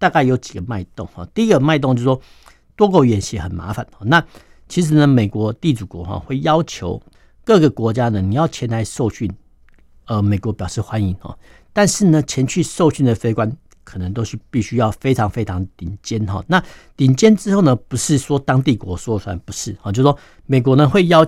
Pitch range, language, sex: 105-150 Hz, Chinese, male